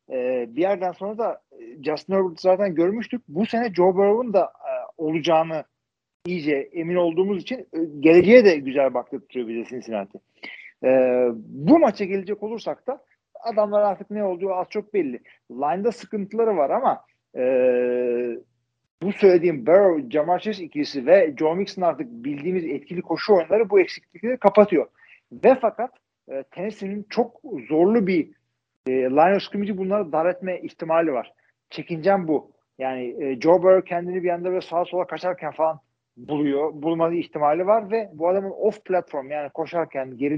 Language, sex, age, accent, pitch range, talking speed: Turkish, male, 50-69, native, 145-205 Hz, 155 wpm